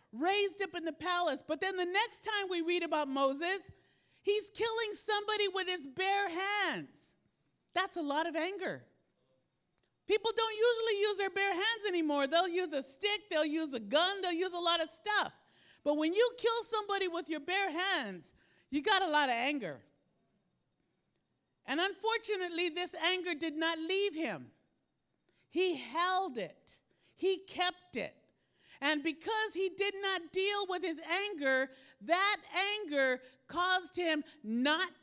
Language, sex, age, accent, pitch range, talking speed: English, female, 50-69, American, 290-385 Hz, 155 wpm